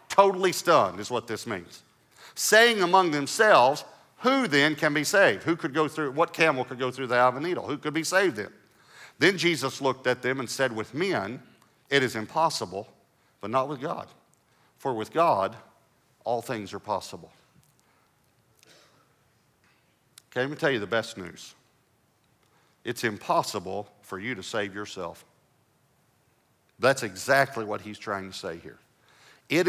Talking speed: 160 wpm